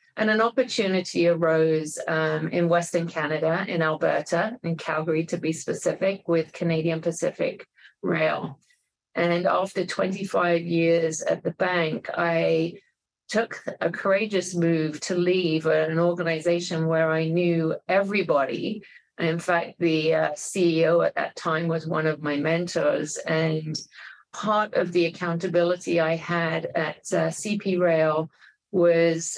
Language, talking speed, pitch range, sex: English, 130 wpm, 160-175 Hz, female